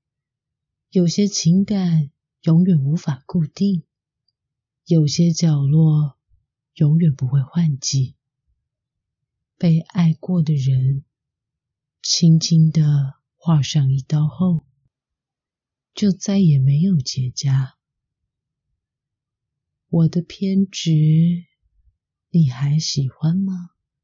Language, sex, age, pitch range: Chinese, female, 30-49, 135-170 Hz